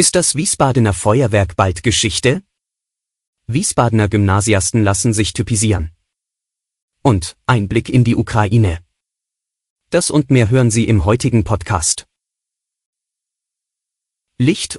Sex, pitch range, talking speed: male, 100-125 Hz, 100 wpm